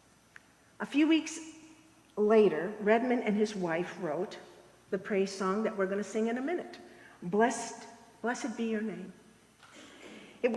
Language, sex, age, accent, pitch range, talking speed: English, female, 50-69, American, 195-250 Hz, 150 wpm